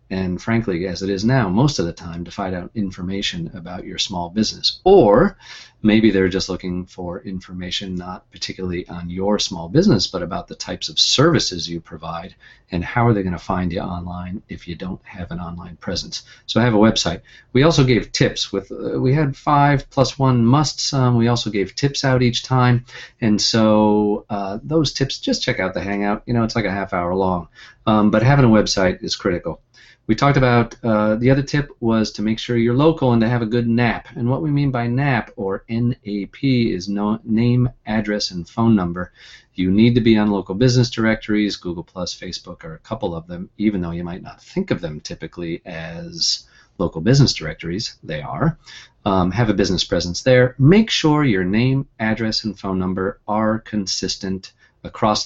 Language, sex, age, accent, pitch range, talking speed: English, male, 40-59, American, 95-125 Hz, 200 wpm